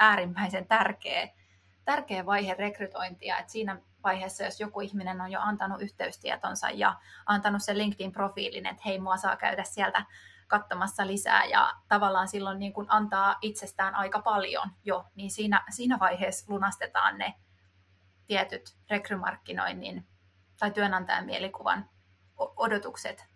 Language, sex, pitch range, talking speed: Finnish, female, 180-210 Hz, 125 wpm